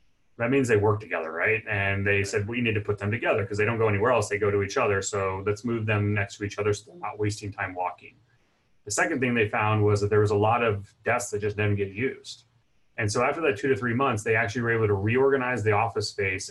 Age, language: 30-49, English